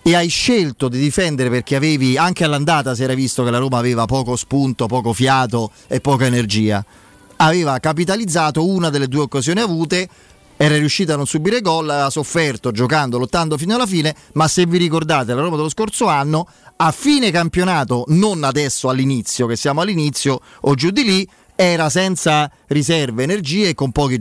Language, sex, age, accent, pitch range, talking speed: Italian, male, 30-49, native, 125-165 Hz, 180 wpm